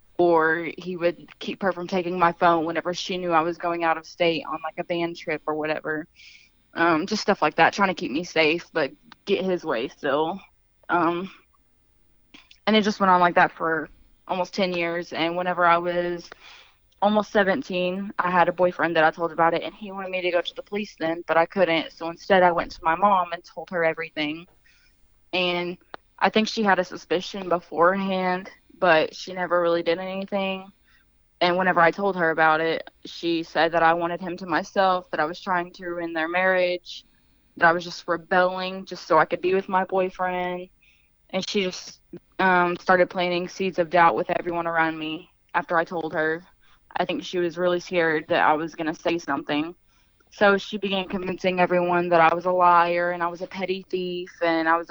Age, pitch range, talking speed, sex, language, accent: 20-39, 165-185 Hz, 210 wpm, female, English, American